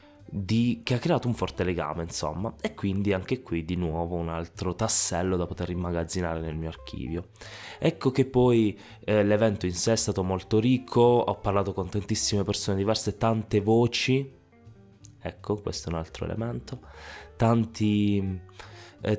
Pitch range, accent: 85-110 Hz, native